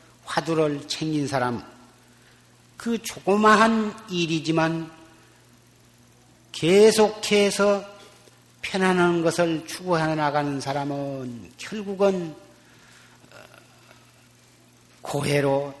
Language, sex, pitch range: Korean, male, 125-175 Hz